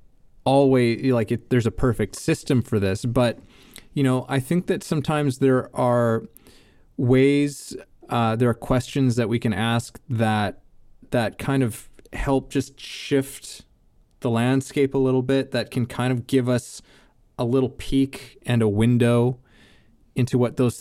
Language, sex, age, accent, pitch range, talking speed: English, male, 20-39, American, 110-135 Hz, 155 wpm